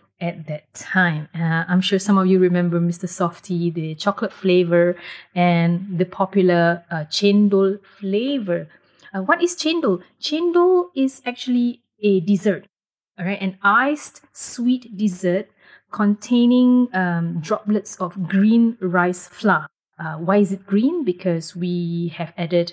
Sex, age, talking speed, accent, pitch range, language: female, 30-49, 135 wpm, Malaysian, 180-220 Hz, English